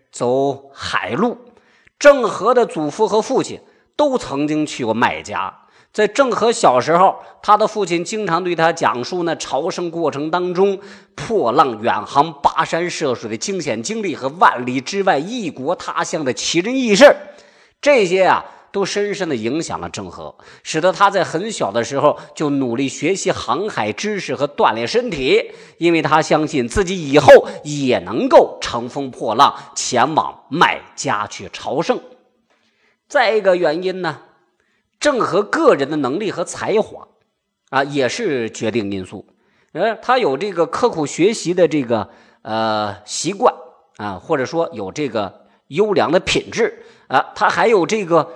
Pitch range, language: 140-210 Hz, Chinese